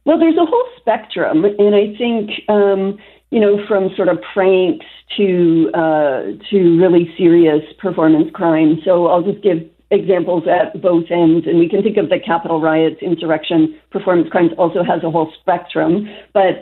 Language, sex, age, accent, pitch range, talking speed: English, female, 50-69, American, 170-210 Hz, 170 wpm